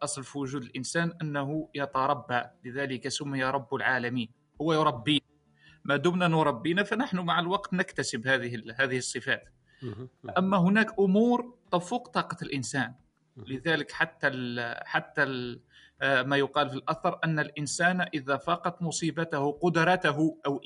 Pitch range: 140-180 Hz